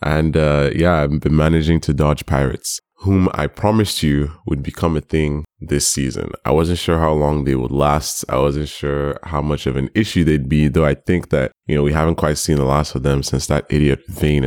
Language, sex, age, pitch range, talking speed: English, male, 20-39, 70-80 Hz, 230 wpm